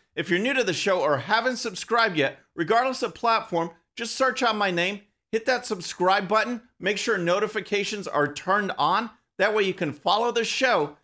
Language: English